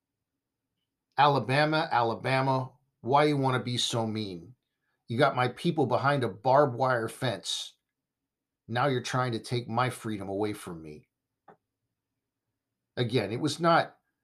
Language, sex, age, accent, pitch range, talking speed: English, male, 50-69, American, 110-140 Hz, 135 wpm